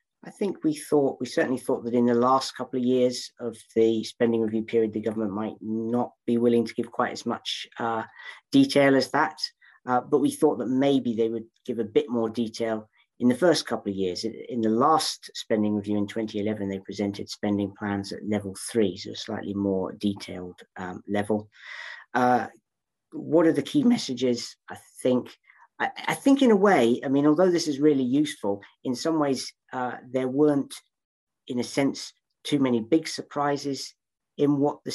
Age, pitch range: 40-59, 105-130 Hz